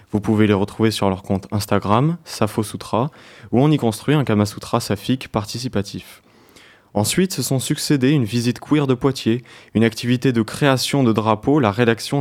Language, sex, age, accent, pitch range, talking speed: French, male, 20-39, French, 105-135 Hz, 175 wpm